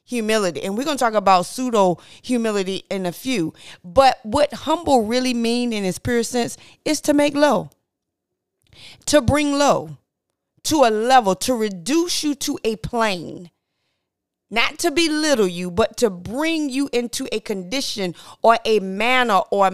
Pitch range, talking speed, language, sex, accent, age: 200-270 Hz, 160 wpm, English, female, American, 40-59